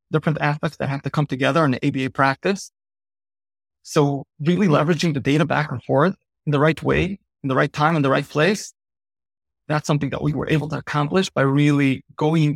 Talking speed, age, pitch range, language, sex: 200 wpm, 30-49, 135-155 Hz, English, male